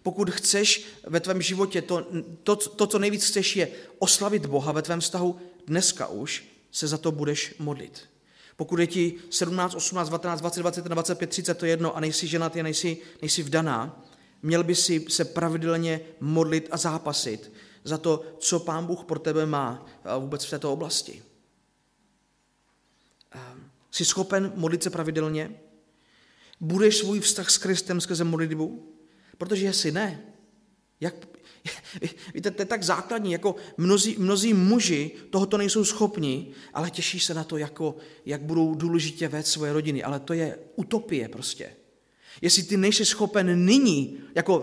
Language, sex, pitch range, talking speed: Czech, male, 160-205 Hz, 145 wpm